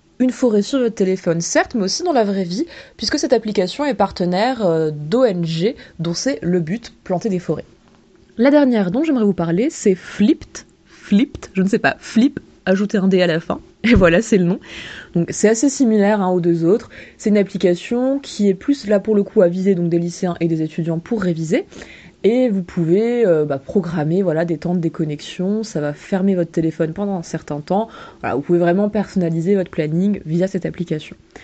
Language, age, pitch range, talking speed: French, 20-39, 170-230 Hz, 210 wpm